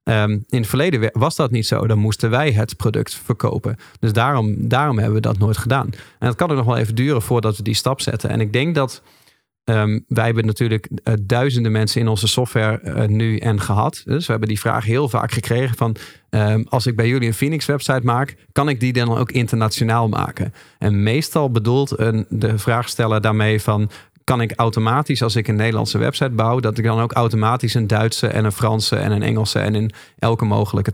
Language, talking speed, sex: Dutch, 215 wpm, male